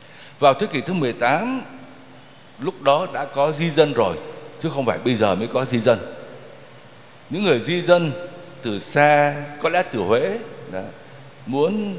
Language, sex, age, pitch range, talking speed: Vietnamese, male, 60-79, 120-165 Hz, 160 wpm